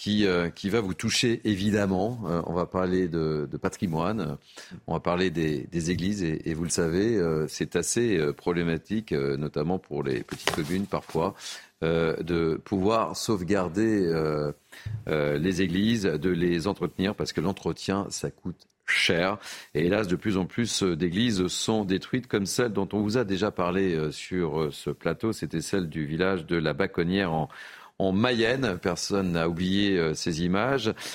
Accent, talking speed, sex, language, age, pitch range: French, 180 wpm, male, French, 40-59, 85-105 Hz